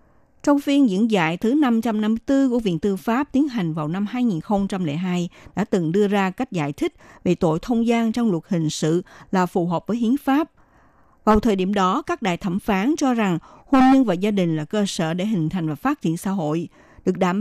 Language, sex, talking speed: Vietnamese, female, 220 wpm